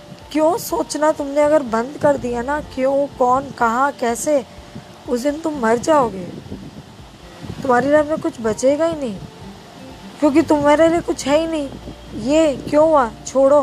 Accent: native